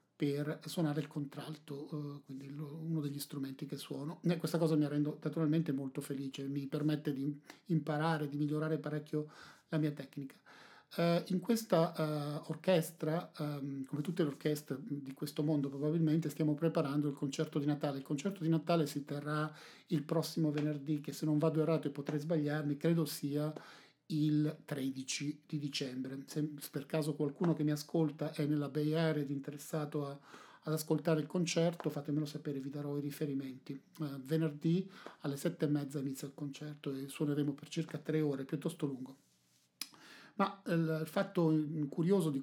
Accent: native